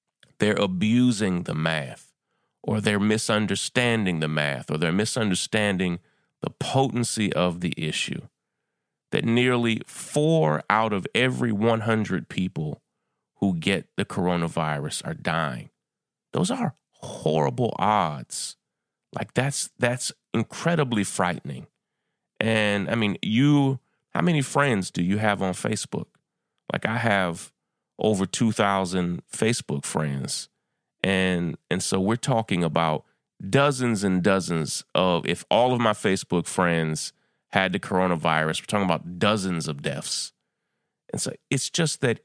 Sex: male